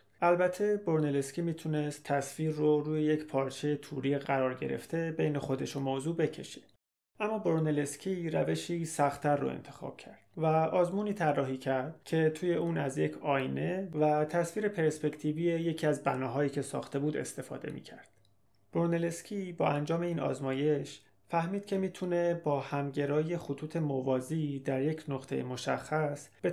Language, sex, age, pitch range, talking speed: Persian, male, 30-49, 140-170 Hz, 140 wpm